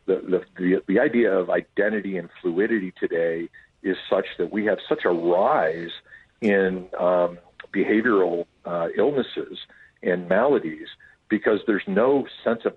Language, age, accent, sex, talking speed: English, 50-69, American, male, 135 wpm